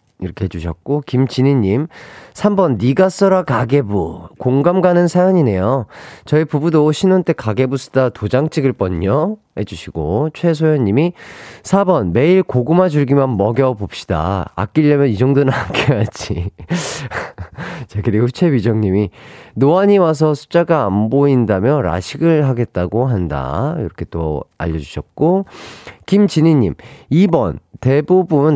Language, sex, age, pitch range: Korean, male, 40-59, 105-155 Hz